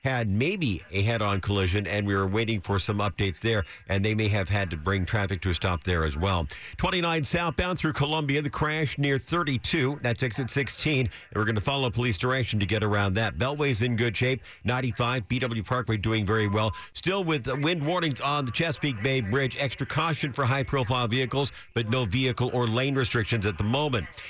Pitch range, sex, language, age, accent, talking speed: 110-145 Hz, male, English, 50-69, American, 205 wpm